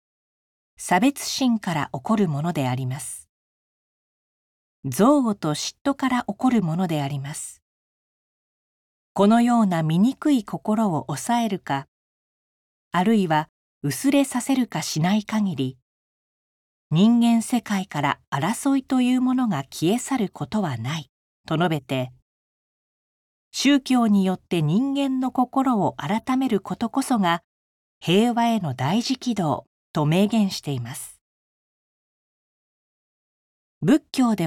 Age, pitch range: 40-59, 145-240 Hz